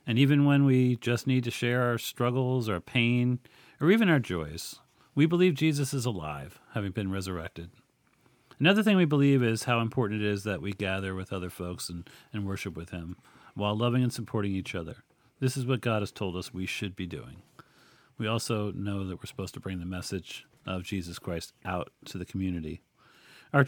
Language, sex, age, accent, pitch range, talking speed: English, male, 40-59, American, 100-135 Hz, 200 wpm